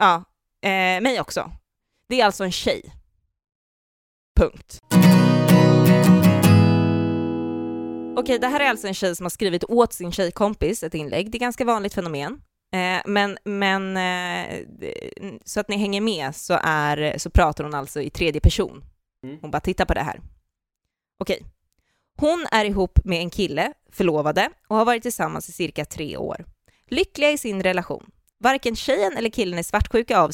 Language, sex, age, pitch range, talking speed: Swedish, female, 20-39, 165-230 Hz, 160 wpm